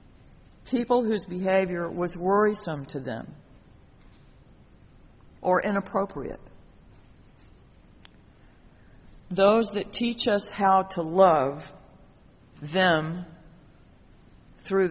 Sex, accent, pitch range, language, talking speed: female, American, 160-210 Hz, English, 70 wpm